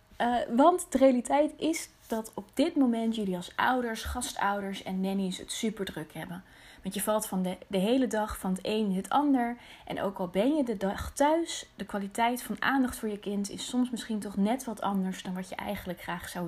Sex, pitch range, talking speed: female, 200-265 Hz, 220 wpm